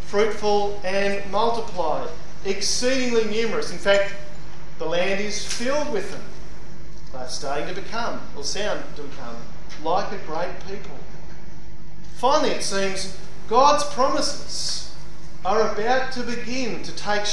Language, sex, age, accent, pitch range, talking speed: English, male, 40-59, Australian, 165-200 Hz, 125 wpm